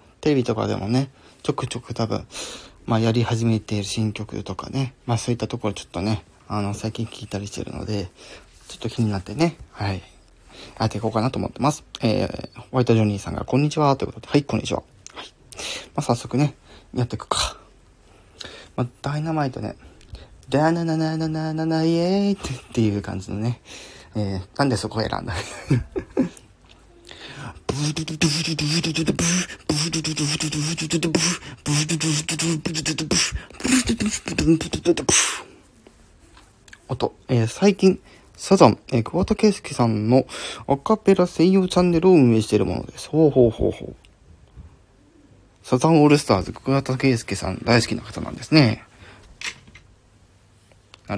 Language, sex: Japanese, male